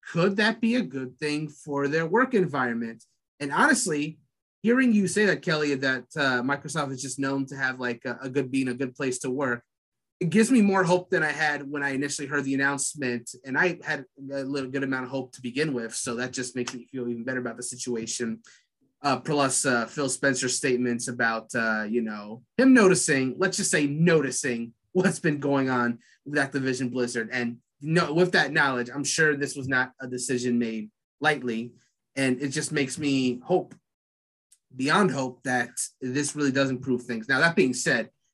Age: 30-49